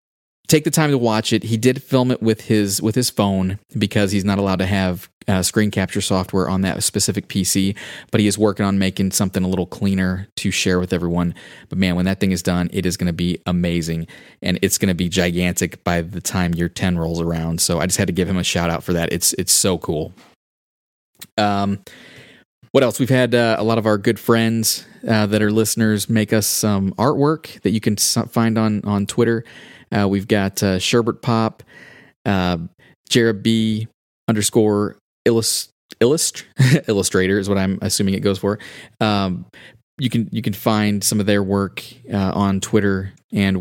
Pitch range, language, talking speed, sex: 95-115 Hz, English, 200 wpm, male